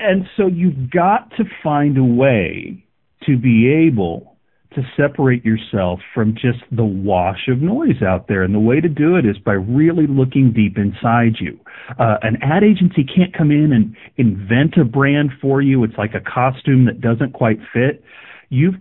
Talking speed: 180 wpm